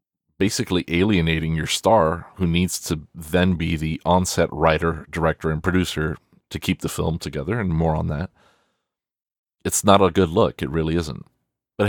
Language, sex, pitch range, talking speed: English, male, 80-95 Hz, 165 wpm